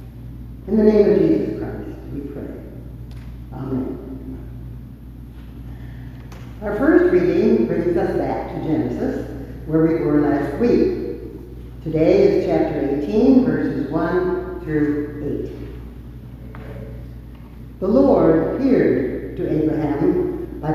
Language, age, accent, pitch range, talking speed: English, 60-79, American, 150-245 Hz, 105 wpm